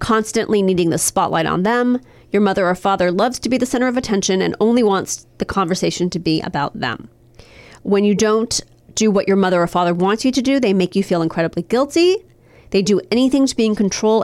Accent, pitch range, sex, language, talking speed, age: American, 180-245 Hz, female, English, 220 wpm, 30-49